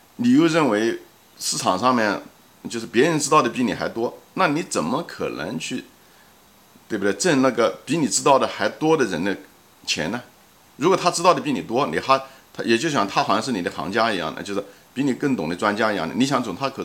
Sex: male